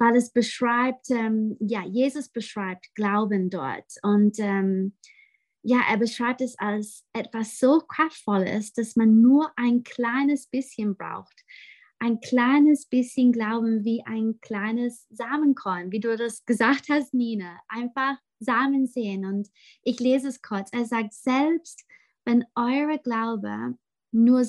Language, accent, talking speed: German, German, 135 wpm